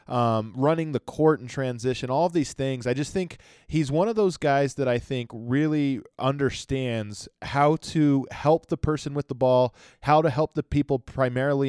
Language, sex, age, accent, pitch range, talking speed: English, male, 20-39, American, 120-150 Hz, 190 wpm